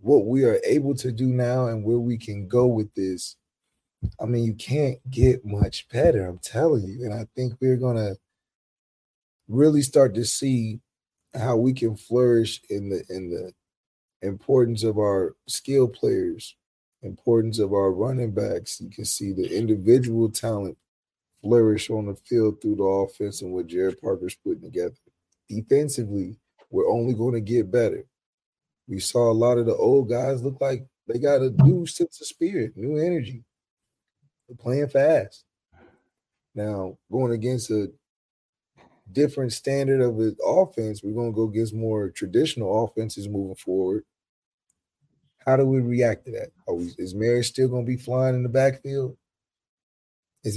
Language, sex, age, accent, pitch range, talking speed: English, male, 30-49, American, 105-130 Hz, 160 wpm